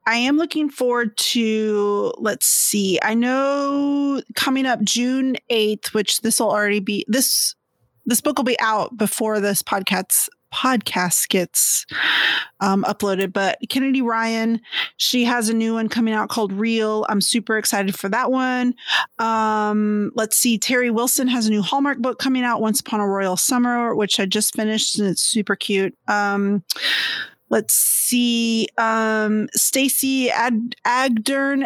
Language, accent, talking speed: English, American, 155 wpm